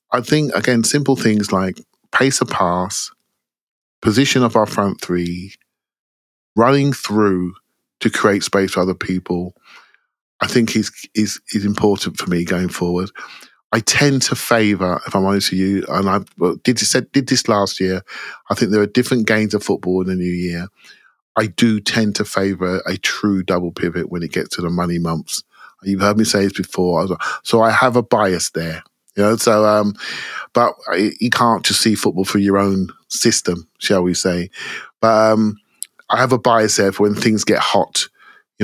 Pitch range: 95-115 Hz